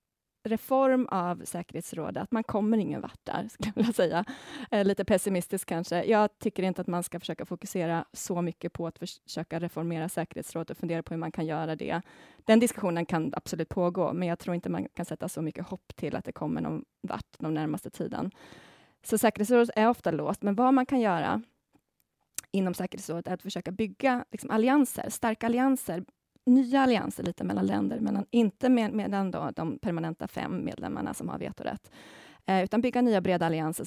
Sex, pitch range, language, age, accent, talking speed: female, 170-230 Hz, Swedish, 20-39, native, 180 wpm